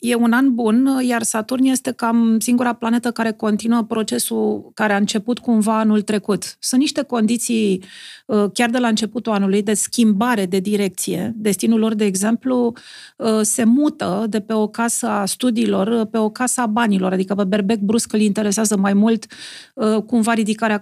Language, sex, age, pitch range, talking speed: Romanian, female, 40-59, 205-235 Hz, 165 wpm